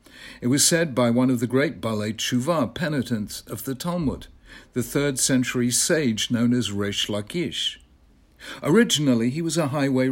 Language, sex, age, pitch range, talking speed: English, male, 60-79, 115-145 Hz, 160 wpm